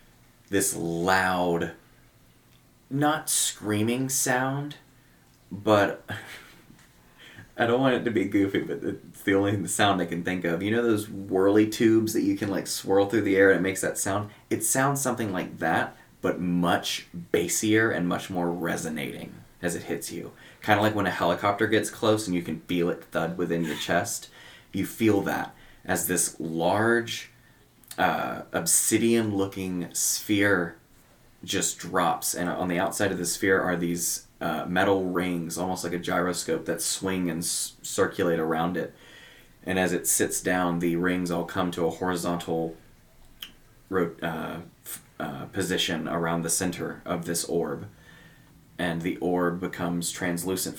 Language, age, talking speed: English, 30-49, 155 wpm